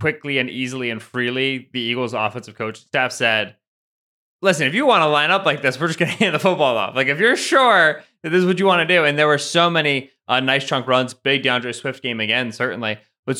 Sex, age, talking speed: male, 20-39, 245 wpm